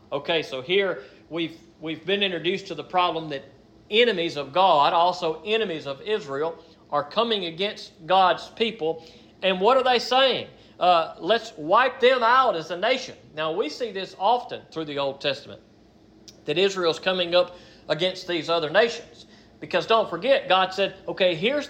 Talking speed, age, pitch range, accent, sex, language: 165 wpm, 40-59, 165-225 Hz, American, male, English